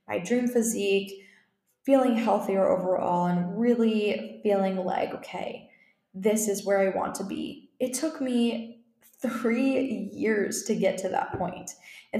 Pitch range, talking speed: 190-235 Hz, 145 wpm